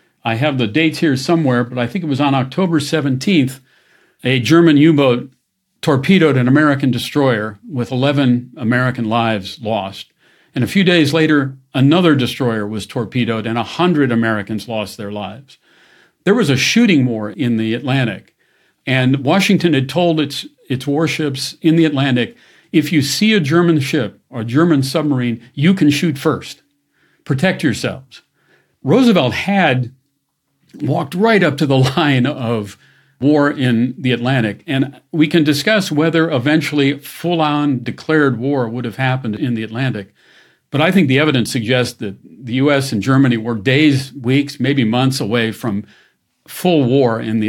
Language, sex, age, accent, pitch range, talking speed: English, male, 50-69, American, 115-150 Hz, 160 wpm